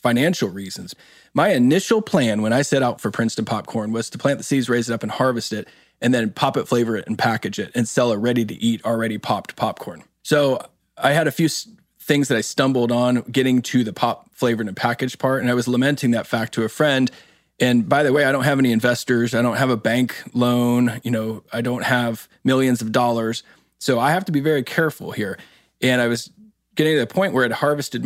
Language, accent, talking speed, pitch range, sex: English, American, 230 wpm, 115-140 Hz, male